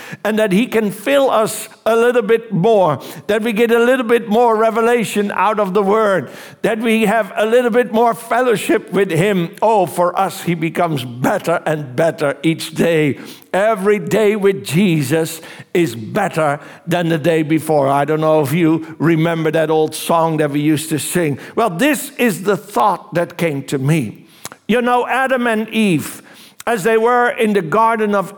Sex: male